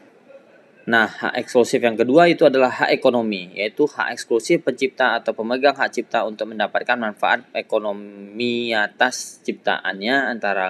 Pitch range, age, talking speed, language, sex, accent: 110-140 Hz, 20-39, 135 wpm, Indonesian, male, native